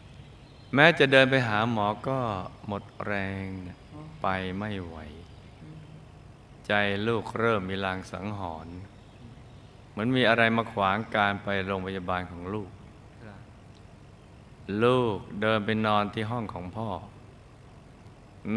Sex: male